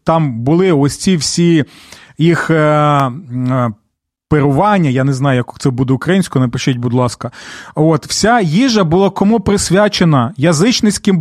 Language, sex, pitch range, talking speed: Ukrainian, male, 145-190 Hz, 140 wpm